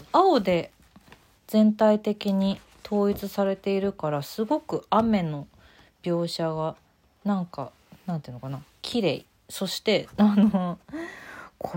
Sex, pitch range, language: female, 155-215 Hz, Japanese